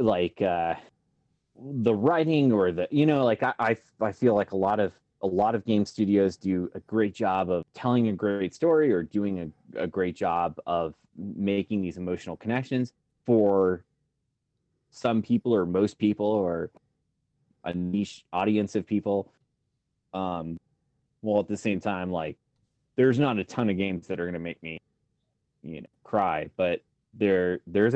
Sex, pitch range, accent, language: male, 90-115 Hz, American, English